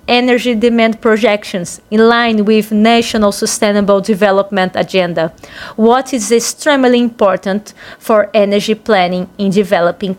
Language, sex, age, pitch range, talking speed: Portuguese, female, 30-49, 200-235 Hz, 110 wpm